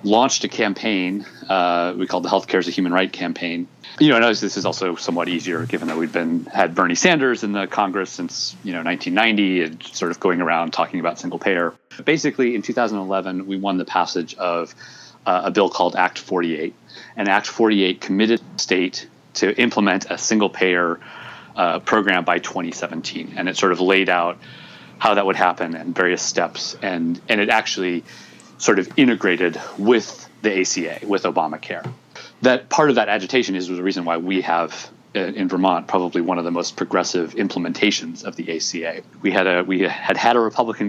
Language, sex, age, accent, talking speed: English, male, 30-49, American, 190 wpm